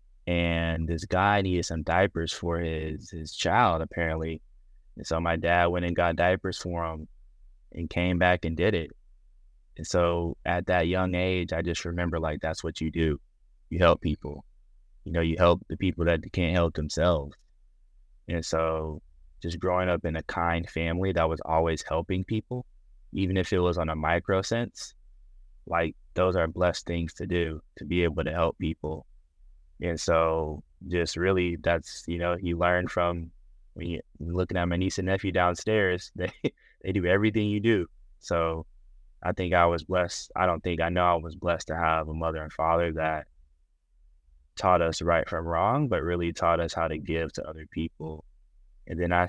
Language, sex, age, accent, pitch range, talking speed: English, male, 20-39, American, 80-90 Hz, 185 wpm